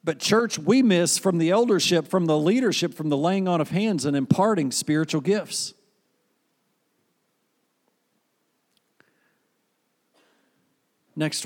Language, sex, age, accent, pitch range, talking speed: English, male, 50-69, American, 125-170 Hz, 110 wpm